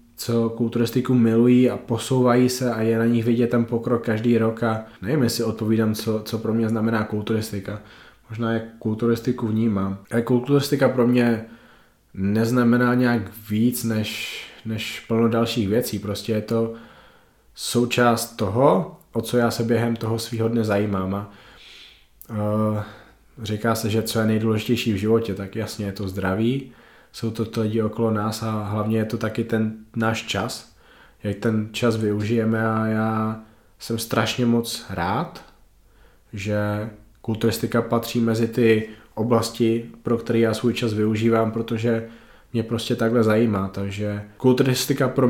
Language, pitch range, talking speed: Czech, 110-115 Hz, 145 wpm